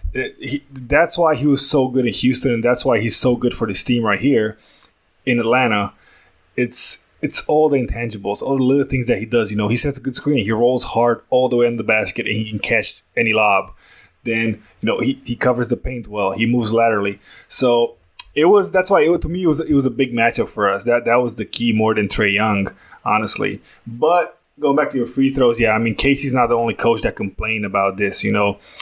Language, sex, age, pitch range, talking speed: English, male, 20-39, 115-140 Hz, 240 wpm